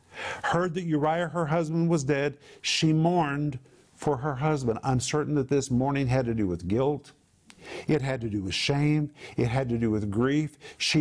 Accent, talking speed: American, 185 wpm